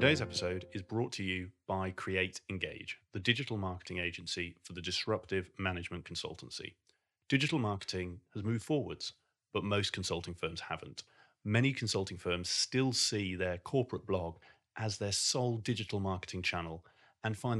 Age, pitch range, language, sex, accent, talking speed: 30-49, 90-115 Hz, English, male, British, 150 wpm